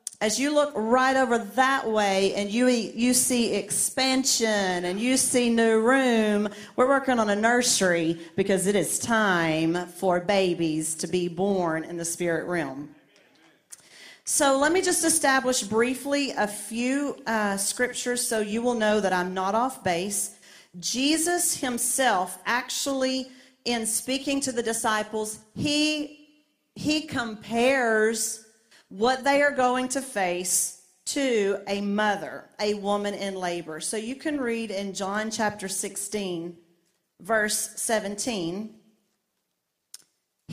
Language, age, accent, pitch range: English, 40-59, American, 185-255 Hz